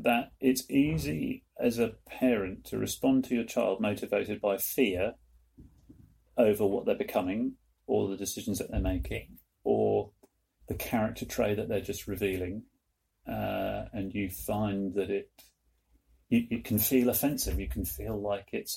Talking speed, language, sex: 155 wpm, English, male